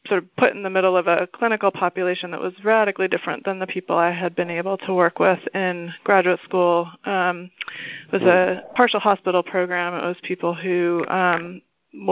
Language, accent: English, American